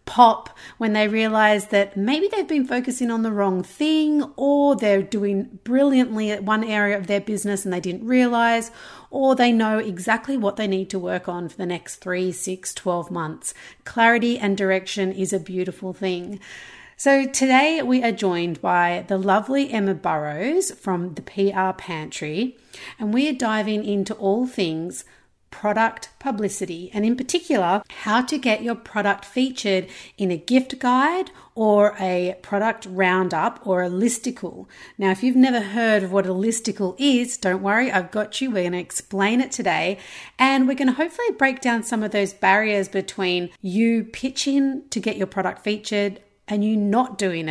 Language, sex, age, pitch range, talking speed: English, female, 40-59, 190-235 Hz, 175 wpm